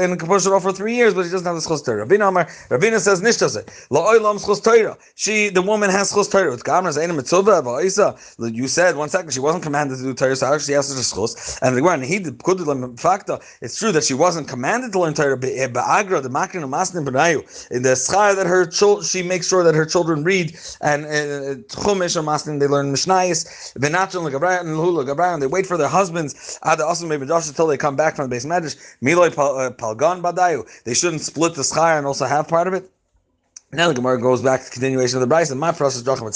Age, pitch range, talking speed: 30-49, 140-185 Hz, 155 wpm